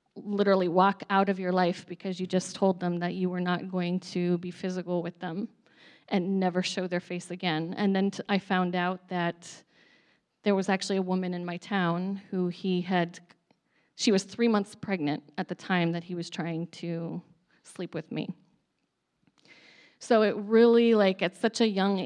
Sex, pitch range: female, 180-210 Hz